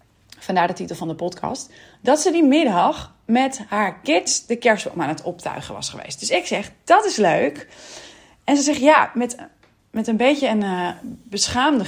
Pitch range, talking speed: 190-255 Hz, 185 wpm